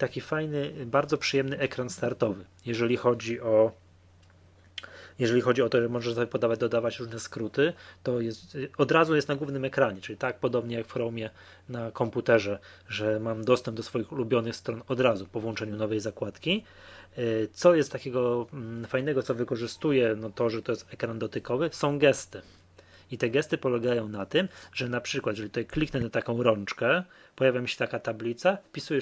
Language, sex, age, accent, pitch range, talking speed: Polish, male, 20-39, native, 110-135 Hz, 175 wpm